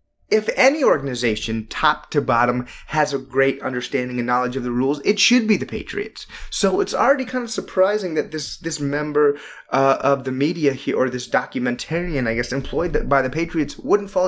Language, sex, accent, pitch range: English, male, American, 125-175 Hz